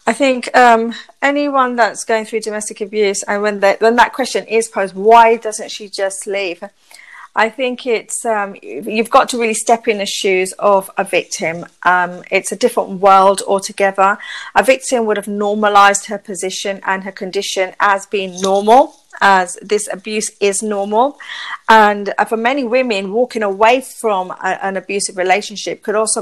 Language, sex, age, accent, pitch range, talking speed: English, female, 40-59, British, 200-235 Hz, 165 wpm